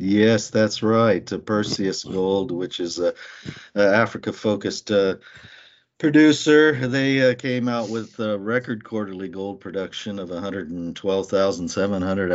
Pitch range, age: 85-110 Hz, 50-69